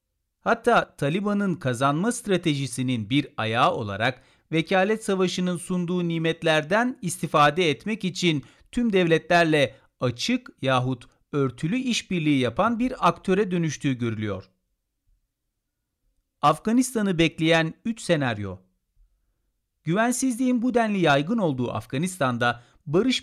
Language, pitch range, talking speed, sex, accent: Turkish, 125-200 Hz, 95 wpm, male, native